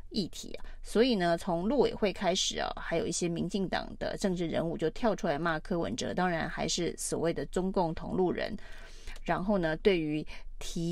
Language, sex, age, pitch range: Chinese, female, 30-49, 170-220 Hz